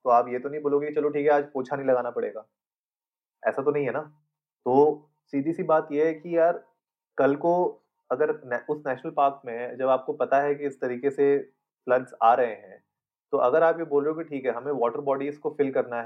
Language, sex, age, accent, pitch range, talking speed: Hindi, male, 30-49, native, 130-160 Hz, 230 wpm